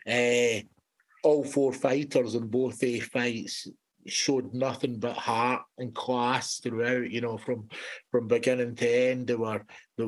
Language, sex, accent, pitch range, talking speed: English, male, British, 120-135 Hz, 150 wpm